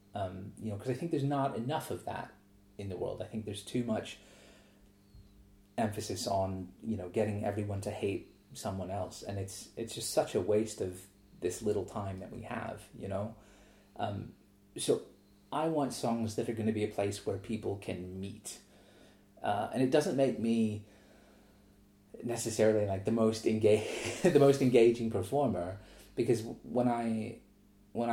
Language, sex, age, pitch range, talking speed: English, male, 30-49, 100-115 Hz, 170 wpm